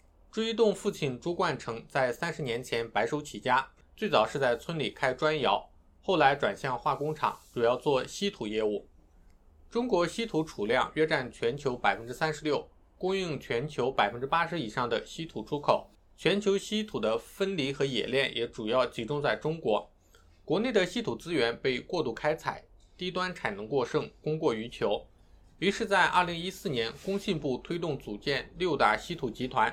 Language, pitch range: Chinese, 120-190 Hz